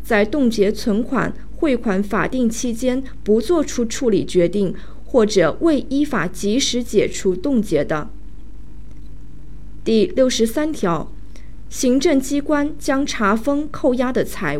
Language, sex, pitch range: Chinese, female, 205-280 Hz